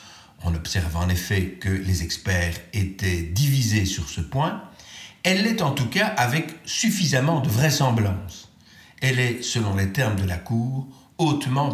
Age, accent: 60-79, French